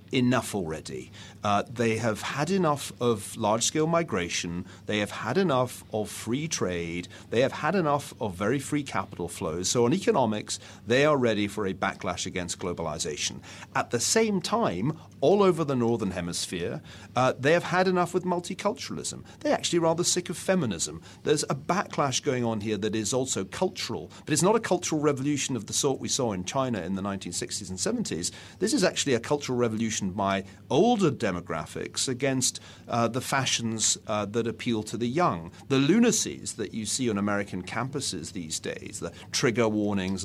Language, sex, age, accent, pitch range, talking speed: English, male, 40-59, British, 100-145 Hz, 175 wpm